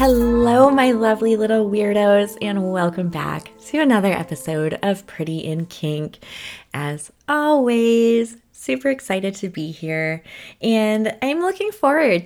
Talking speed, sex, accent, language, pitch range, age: 125 wpm, female, American, English, 175-230 Hz, 20-39